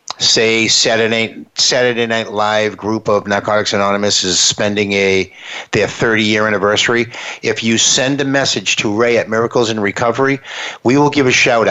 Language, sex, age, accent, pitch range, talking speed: English, male, 50-69, American, 105-125 Hz, 165 wpm